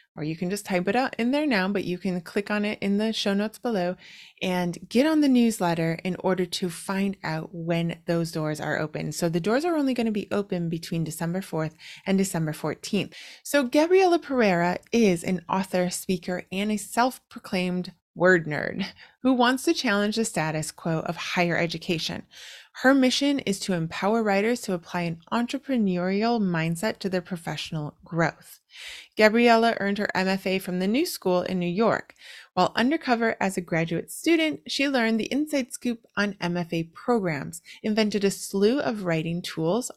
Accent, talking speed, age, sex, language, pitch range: American, 180 wpm, 20-39, female, English, 175-230 Hz